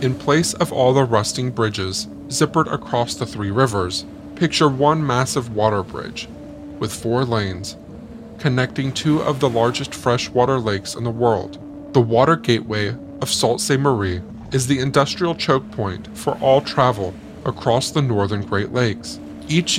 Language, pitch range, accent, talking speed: English, 110-145 Hz, American, 155 wpm